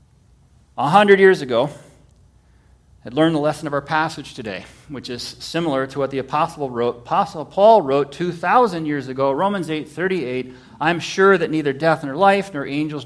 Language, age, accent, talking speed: English, 40-59, American, 180 wpm